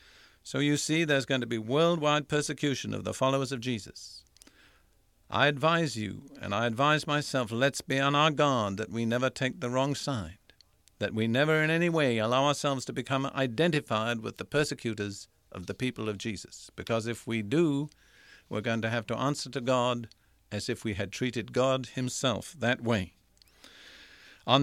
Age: 50-69